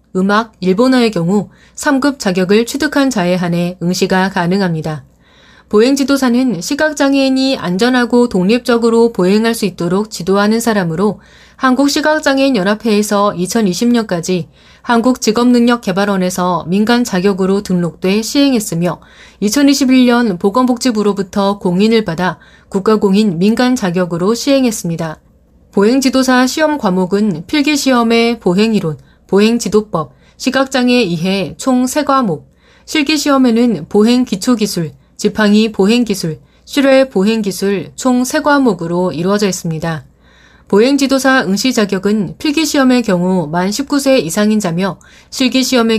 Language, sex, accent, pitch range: Korean, female, native, 180-250 Hz